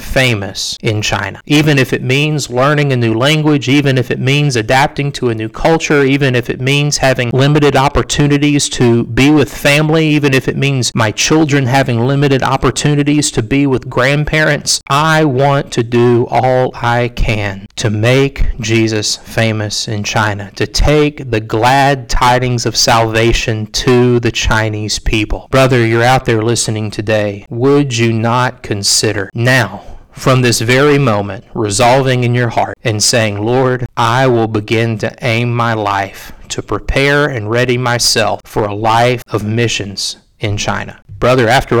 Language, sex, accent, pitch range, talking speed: English, male, American, 115-145 Hz, 160 wpm